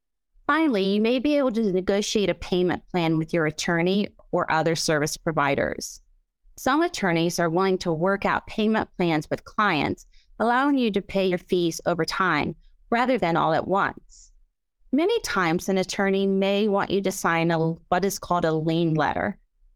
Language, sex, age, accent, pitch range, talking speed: English, female, 30-49, American, 175-220 Hz, 175 wpm